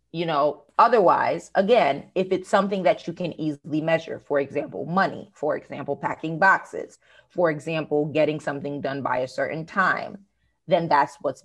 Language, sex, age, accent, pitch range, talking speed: English, female, 30-49, American, 150-190 Hz, 160 wpm